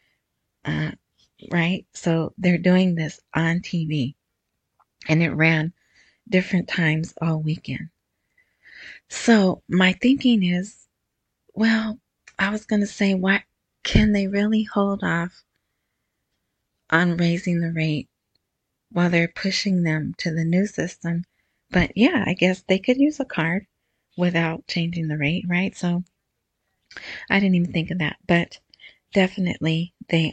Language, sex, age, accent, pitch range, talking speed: English, female, 30-49, American, 165-210 Hz, 135 wpm